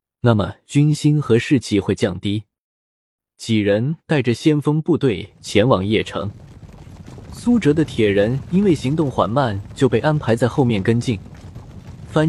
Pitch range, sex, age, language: 105-150 Hz, male, 20-39, Chinese